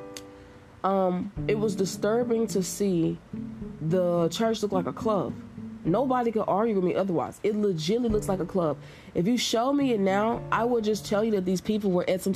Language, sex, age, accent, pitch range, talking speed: English, female, 20-39, American, 165-210 Hz, 200 wpm